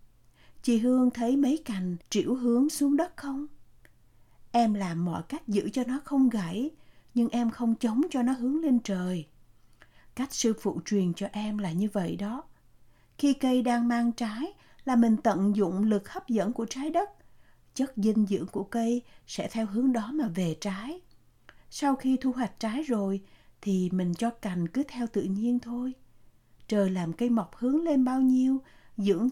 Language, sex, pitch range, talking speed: Vietnamese, female, 200-260 Hz, 180 wpm